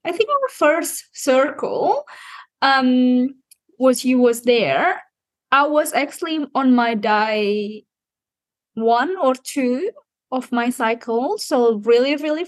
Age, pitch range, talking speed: 20-39, 210-260 Hz, 120 wpm